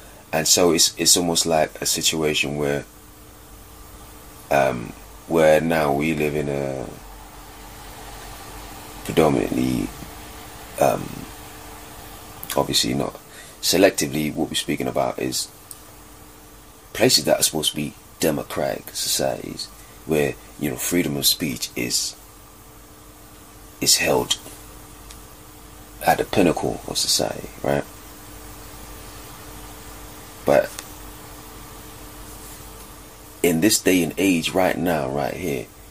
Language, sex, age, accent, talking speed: English, male, 30-49, British, 100 wpm